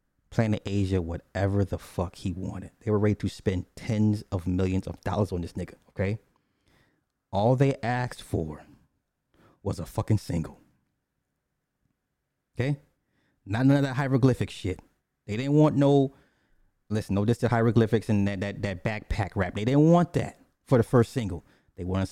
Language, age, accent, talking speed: English, 30-49, American, 165 wpm